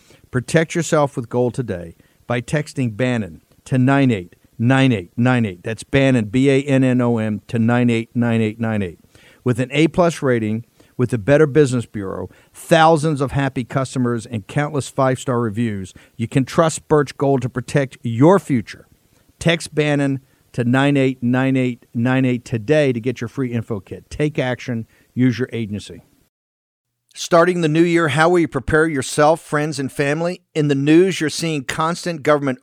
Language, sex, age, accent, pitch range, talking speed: English, male, 50-69, American, 120-150 Hz, 140 wpm